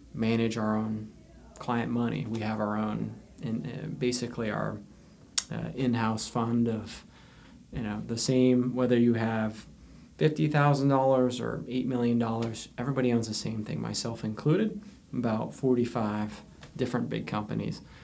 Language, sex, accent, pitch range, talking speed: English, male, American, 110-130 Hz, 130 wpm